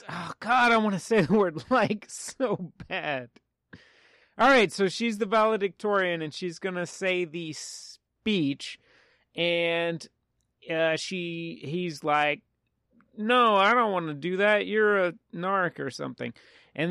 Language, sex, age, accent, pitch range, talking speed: English, male, 30-49, American, 165-215 Hz, 145 wpm